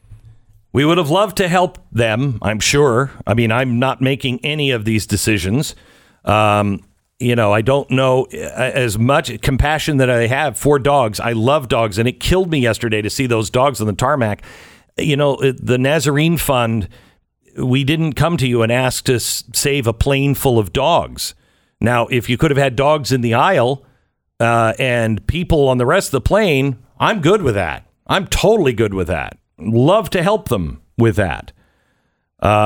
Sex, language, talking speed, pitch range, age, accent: male, English, 185 wpm, 115-145 Hz, 50-69, American